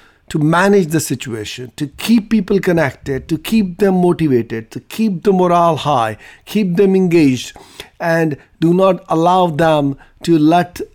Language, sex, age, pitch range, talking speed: English, male, 50-69, 145-190 Hz, 150 wpm